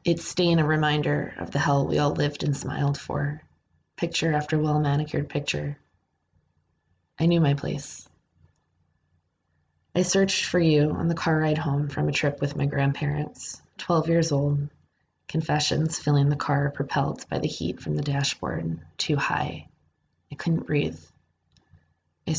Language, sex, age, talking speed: English, female, 20-39, 150 wpm